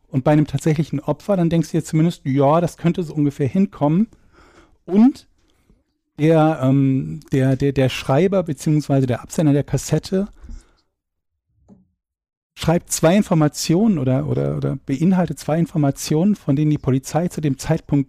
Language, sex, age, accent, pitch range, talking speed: German, male, 40-59, German, 135-165 Hz, 145 wpm